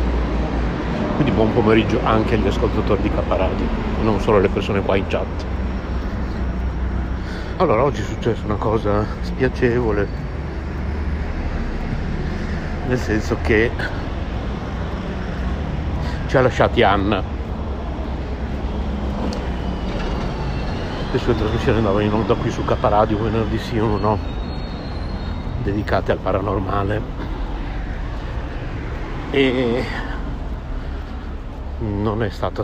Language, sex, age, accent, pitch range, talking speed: Italian, male, 60-79, native, 70-105 Hz, 90 wpm